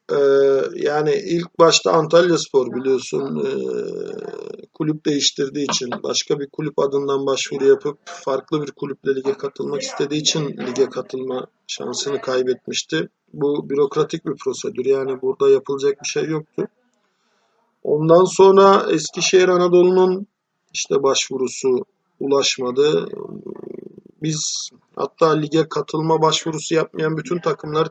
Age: 50-69